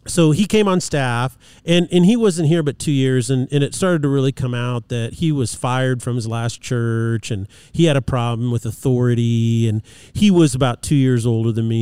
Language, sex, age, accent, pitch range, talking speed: English, male, 40-59, American, 115-135 Hz, 230 wpm